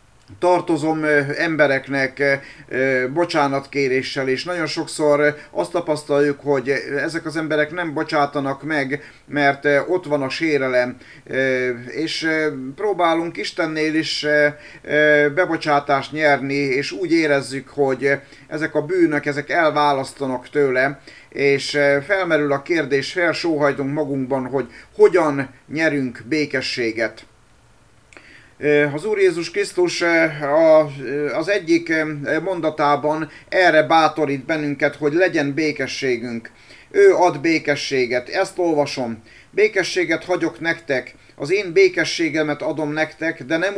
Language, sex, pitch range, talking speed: Hungarian, male, 140-165 Hz, 100 wpm